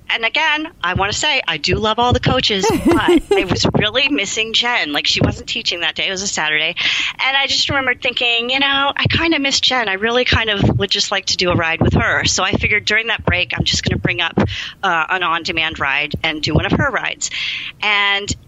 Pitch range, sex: 165-240 Hz, female